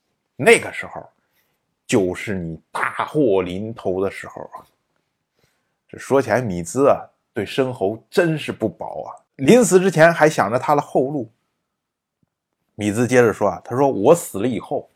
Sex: male